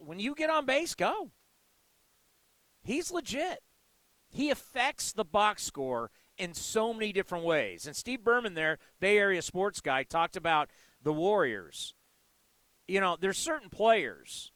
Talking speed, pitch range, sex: 145 wpm, 170-235 Hz, male